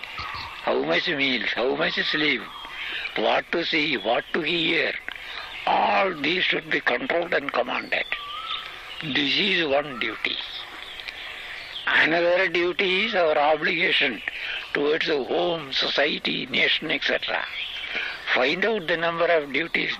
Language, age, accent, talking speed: Tamil, 60-79, native, 120 wpm